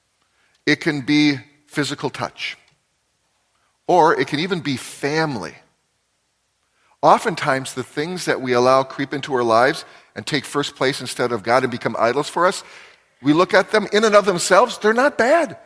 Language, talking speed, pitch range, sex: English, 170 wpm, 120-160 Hz, male